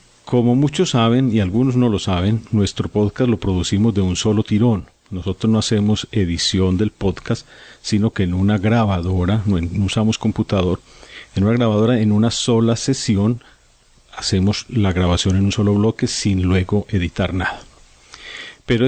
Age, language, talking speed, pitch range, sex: 40-59, Spanish, 155 wpm, 95-110 Hz, male